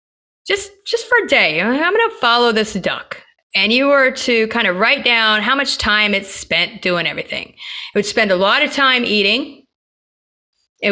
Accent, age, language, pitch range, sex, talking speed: American, 30-49, English, 200-270 Hz, female, 190 wpm